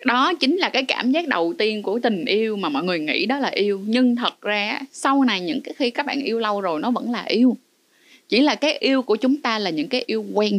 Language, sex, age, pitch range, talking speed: Vietnamese, female, 20-39, 205-280 Hz, 265 wpm